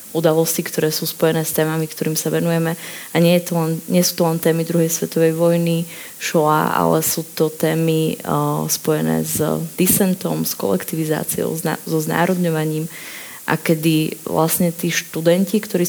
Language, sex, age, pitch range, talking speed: Slovak, female, 20-39, 165-180 Hz, 150 wpm